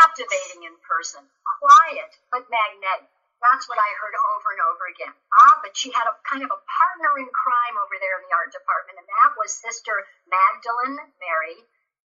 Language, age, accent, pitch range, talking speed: English, 50-69, American, 195-280 Hz, 185 wpm